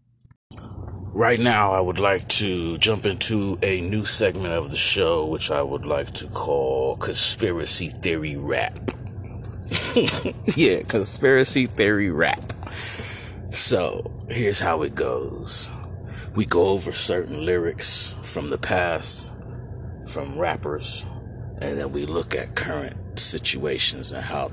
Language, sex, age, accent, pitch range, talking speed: English, male, 30-49, American, 90-115 Hz, 125 wpm